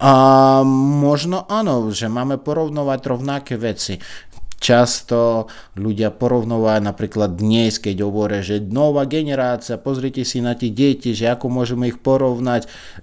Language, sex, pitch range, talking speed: Slovak, male, 105-135 Hz, 130 wpm